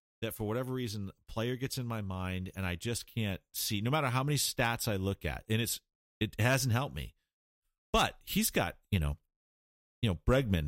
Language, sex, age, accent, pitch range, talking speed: English, male, 40-59, American, 90-130 Hz, 200 wpm